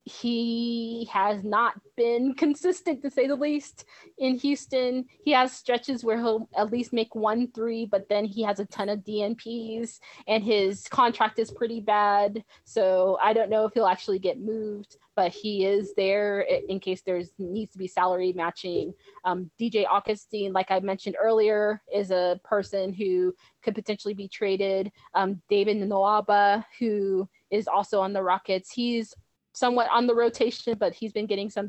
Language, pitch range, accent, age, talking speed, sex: English, 195-235 Hz, American, 20-39, 170 wpm, female